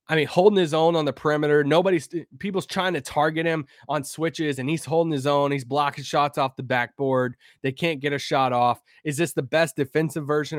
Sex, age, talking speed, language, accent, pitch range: male, 20-39, 220 wpm, English, American, 120-150 Hz